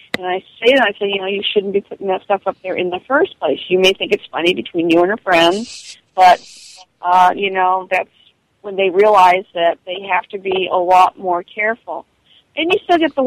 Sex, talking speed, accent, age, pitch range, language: female, 235 wpm, American, 40-59, 185-220 Hz, English